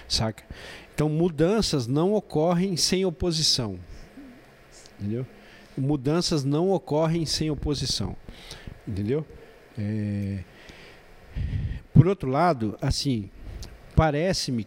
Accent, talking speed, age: Brazilian, 80 wpm, 50-69